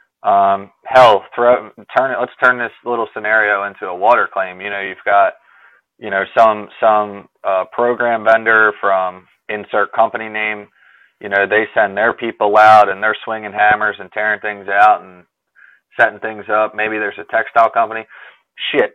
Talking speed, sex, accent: 170 wpm, male, American